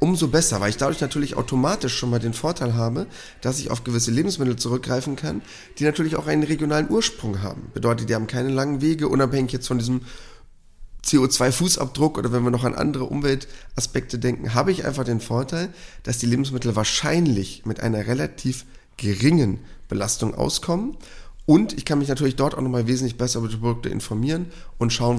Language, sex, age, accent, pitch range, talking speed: German, male, 30-49, German, 115-150 Hz, 180 wpm